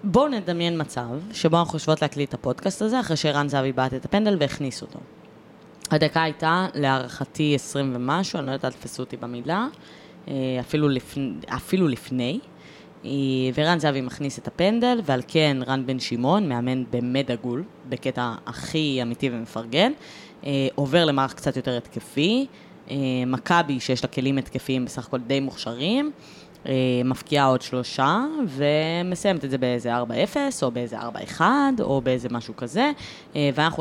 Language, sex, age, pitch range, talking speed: Hebrew, female, 20-39, 125-175 Hz, 140 wpm